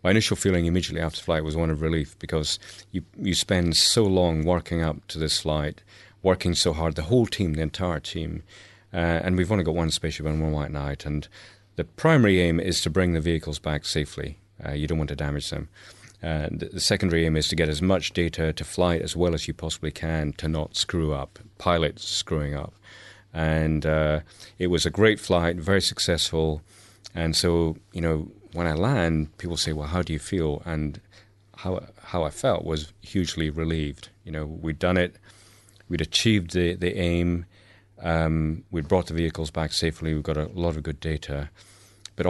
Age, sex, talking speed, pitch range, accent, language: 30-49, male, 200 wpm, 80-100 Hz, British, English